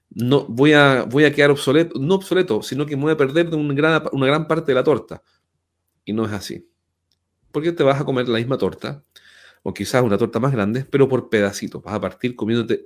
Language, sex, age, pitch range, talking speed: Spanish, male, 40-59, 115-165 Hz, 230 wpm